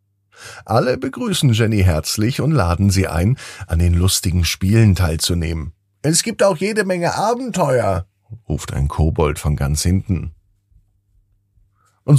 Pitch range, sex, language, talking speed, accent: 85-115 Hz, male, German, 130 wpm, German